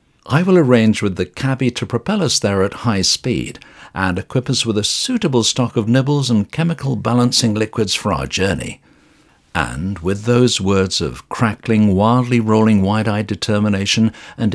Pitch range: 100-130 Hz